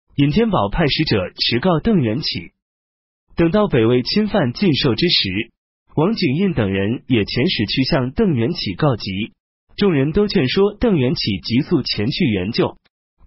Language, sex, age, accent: Chinese, male, 30-49, native